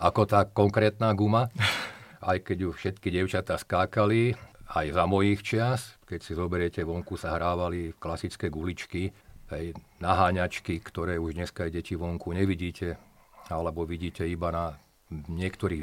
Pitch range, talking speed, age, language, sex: 85-100 Hz, 135 wpm, 50-69, Slovak, male